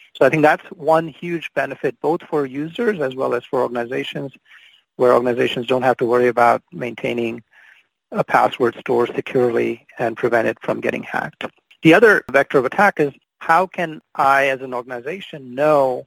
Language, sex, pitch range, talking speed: English, male, 125-155 Hz, 170 wpm